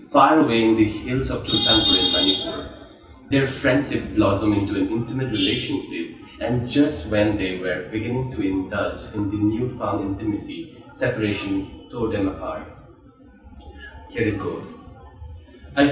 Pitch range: 100-115 Hz